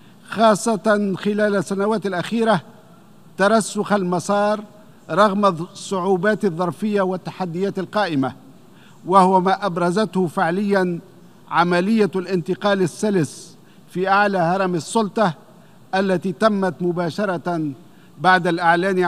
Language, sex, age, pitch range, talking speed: Arabic, male, 50-69, 175-205 Hz, 85 wpm